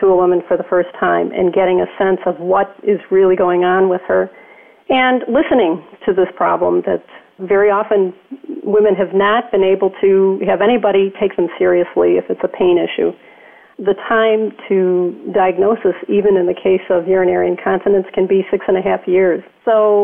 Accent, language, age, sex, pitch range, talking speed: American, English, 40-59, female, 190-220 Hz, 185 wpm